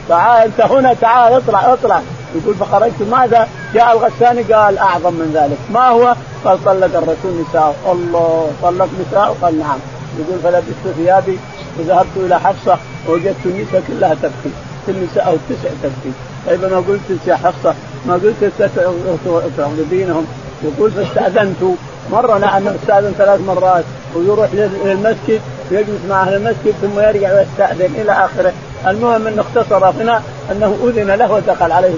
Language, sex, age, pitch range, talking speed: Arabic, male, 50-69, 175-220 Hz, 150 wpm